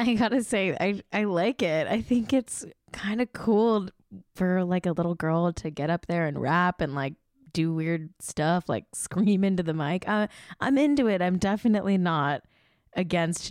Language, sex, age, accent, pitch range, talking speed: English, female, 10-29, American, 160-200 Hz, 185 wpm